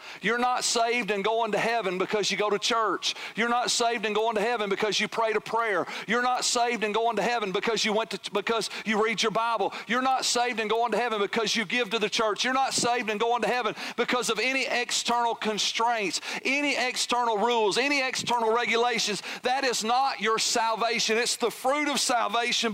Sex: male